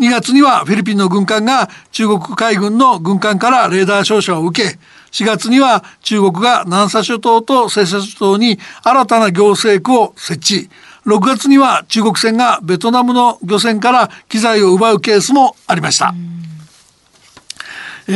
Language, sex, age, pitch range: Japanese, male, 60-79, 205-245 Hz